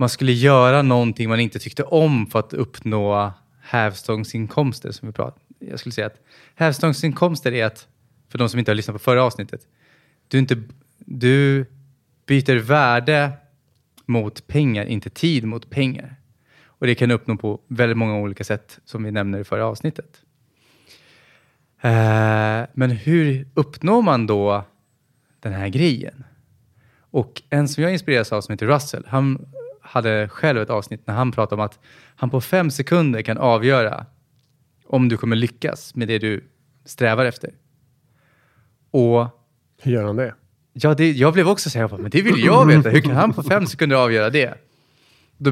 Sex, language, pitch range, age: male, English, 110-140 Hz, 20-39